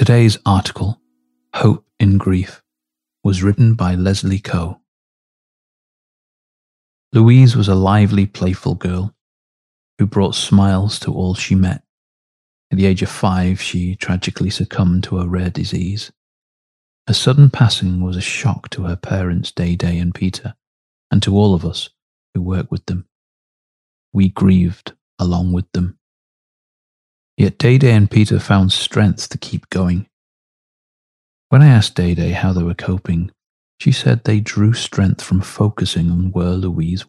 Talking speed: 145 wpm